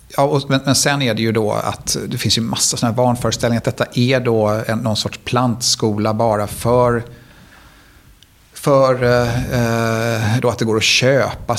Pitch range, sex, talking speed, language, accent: 110-125 Hz, male, 175 wpm, Swedish, native